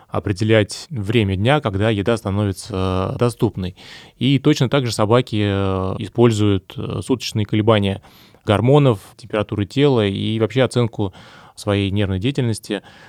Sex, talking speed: male, 110 wpm